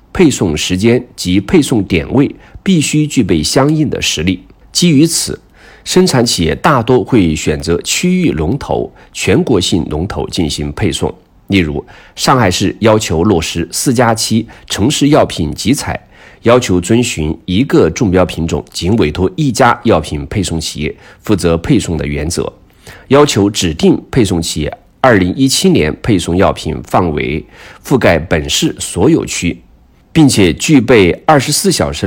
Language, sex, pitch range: Chinese, male, 85-125 Hz